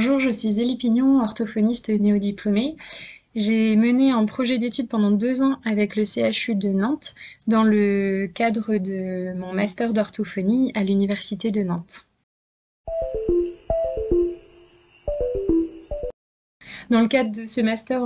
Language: French